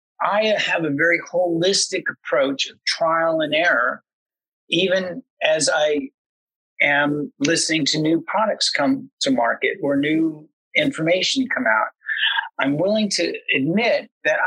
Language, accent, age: English, American, 50-69